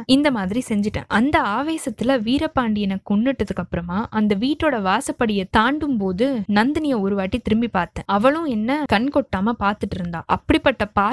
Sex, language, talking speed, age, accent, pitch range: female, Tamil, 90 wpm, 20-39, native, 205-265 Hz